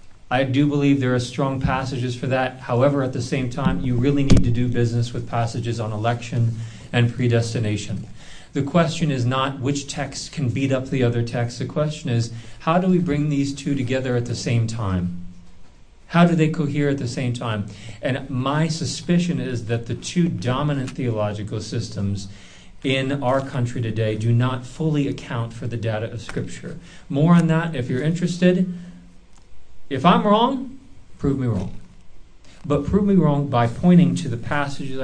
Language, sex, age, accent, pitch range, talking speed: English, male, 40-59, American, 115-145 Hz, 180 wpm